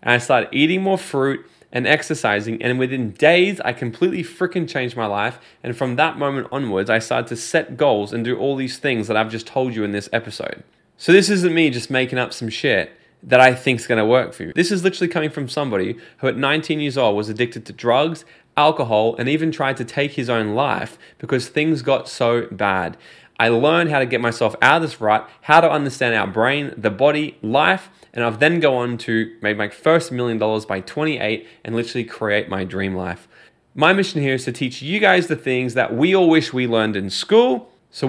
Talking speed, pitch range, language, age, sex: 225 wpm, 115-155 Hz, English, 20-39, male